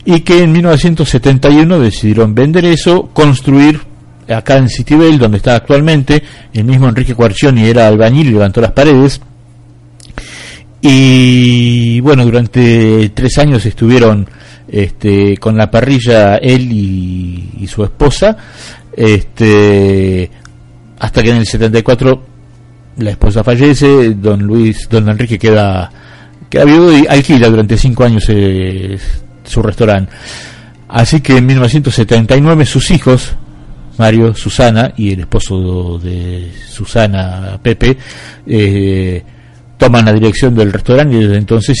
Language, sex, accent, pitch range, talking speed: Spanish, male, Argentinian, 100-130 Hz, 125 wpm